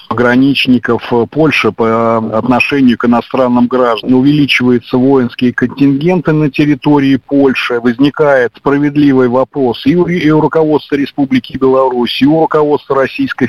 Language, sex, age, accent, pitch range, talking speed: Russian, male, 50-69, native, 120-145 Hz, 115 wpm